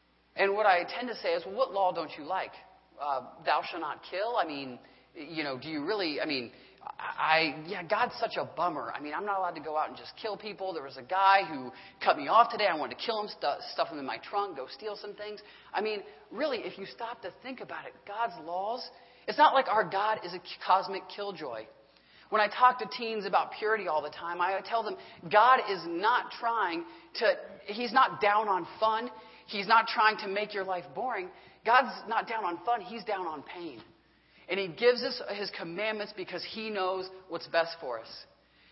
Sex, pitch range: male, 185-225 Hz